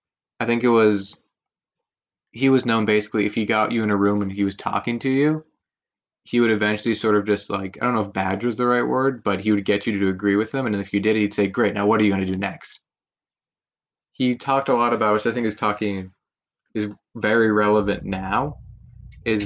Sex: male